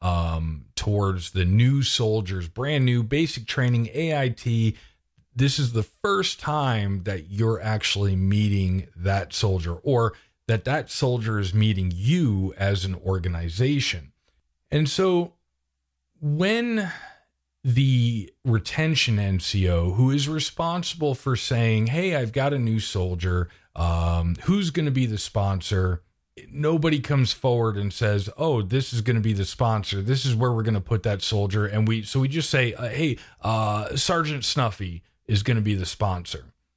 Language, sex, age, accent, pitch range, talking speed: English, male, 40-59, American, 95-130 Hz, 150 wpm